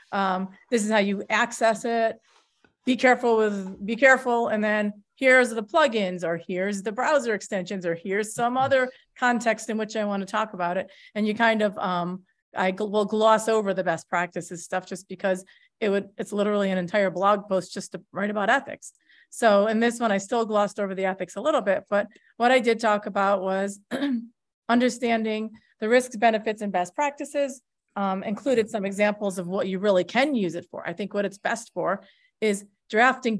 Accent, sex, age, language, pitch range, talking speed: American, female, 30-49, English, 195-235 Hz, 200 wpm